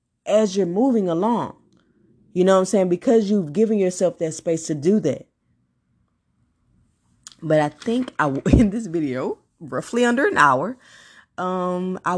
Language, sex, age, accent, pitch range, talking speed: English, female, 20-39, American, 145-175 Hz, 150 wpm